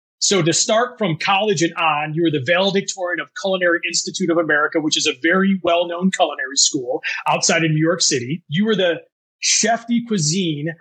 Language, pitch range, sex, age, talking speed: English, 165-205 Hz, male, 30-49, 190 wpm